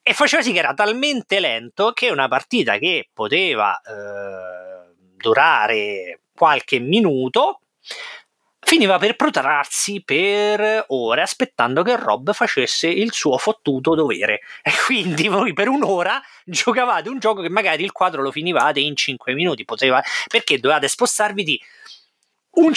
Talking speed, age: 135 wpm, 30-49